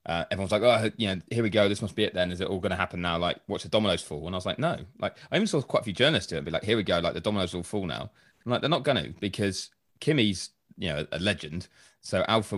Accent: British